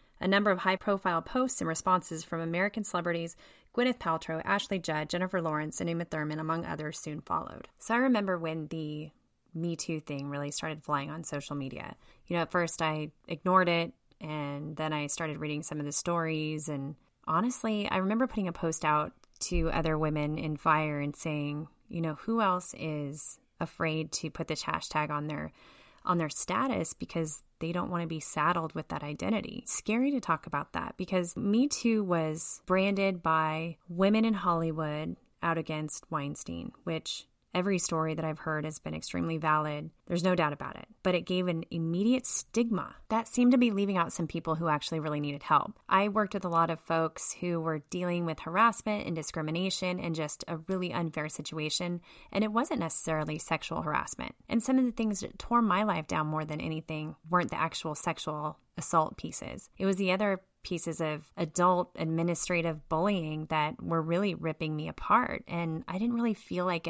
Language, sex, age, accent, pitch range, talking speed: English, female, 20-39, American, 155-185 Hz, 190 wpm